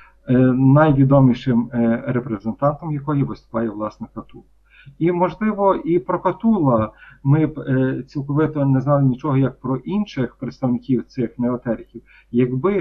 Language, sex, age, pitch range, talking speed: Ukrainian, male, 40-59, 120-150 Hz, 110 wpm